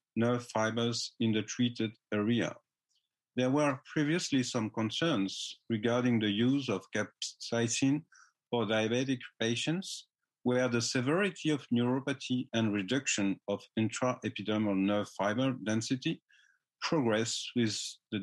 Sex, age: male, 50-69